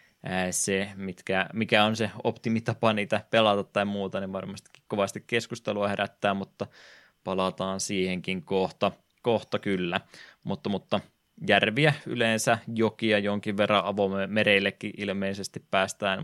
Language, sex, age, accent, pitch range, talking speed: Finnish, male, 20-39, native, 95-110 Hz, 115 wpm